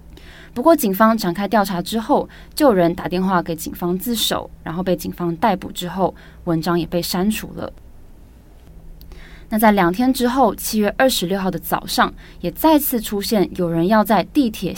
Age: 20-39